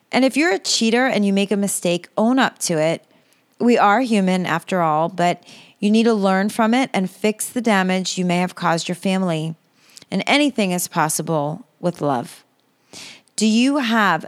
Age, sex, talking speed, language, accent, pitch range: 30-49, female, 190 wpm, English, American, 180-225 Hz